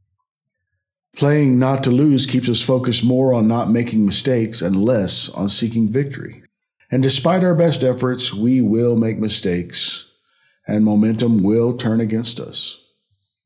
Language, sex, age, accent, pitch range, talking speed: English, male, 50-69, American, 95-125 Hz, 145 wpm